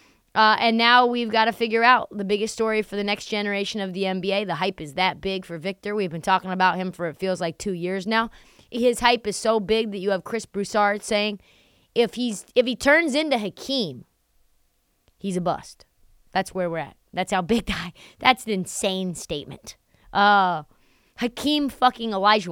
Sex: female